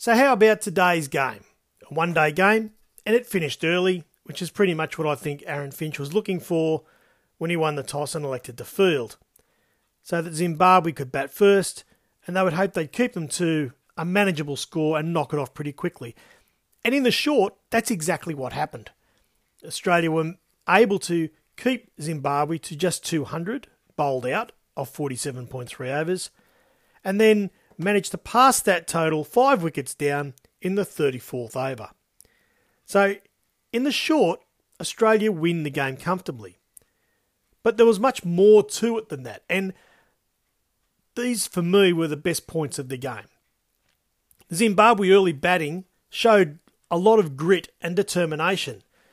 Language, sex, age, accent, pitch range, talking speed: English, male, 40-59, Australian, 150-200 Hz, 160 wpm